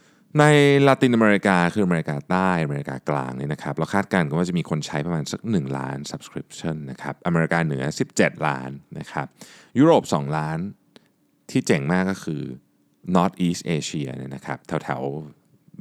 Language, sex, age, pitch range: Thai, male, 20-39, 70-95 Hz